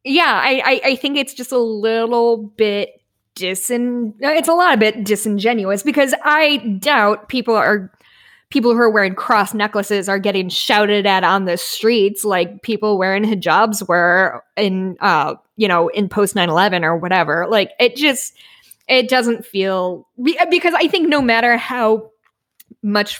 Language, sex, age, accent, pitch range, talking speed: English, female, 10-29, American, 195-245 Hz, 160 wpm